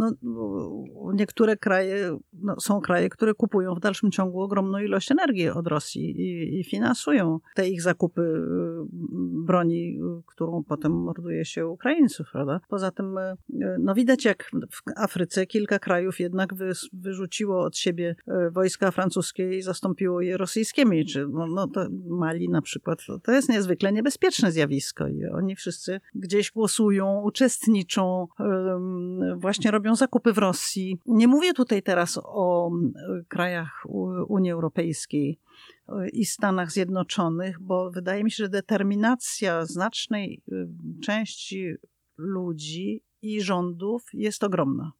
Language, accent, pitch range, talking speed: Polish, native, 175-215 Hz, 130 wpm